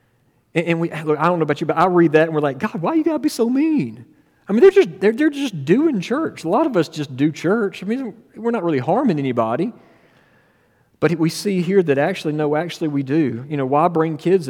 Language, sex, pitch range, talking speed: English, male, 135-175 Hz, 250 wpm